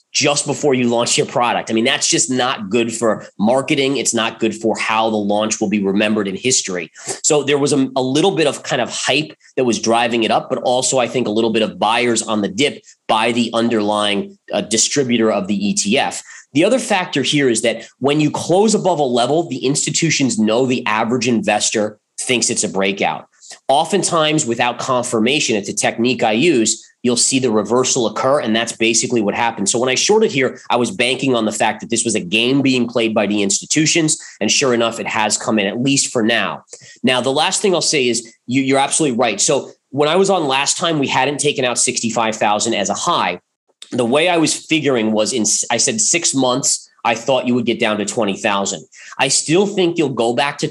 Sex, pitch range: male, 110-145 Hz